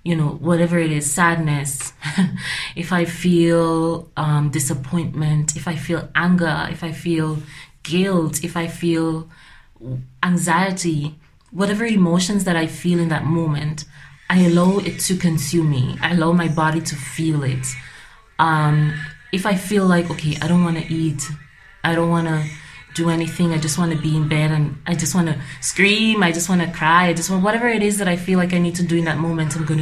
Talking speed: 195 wpm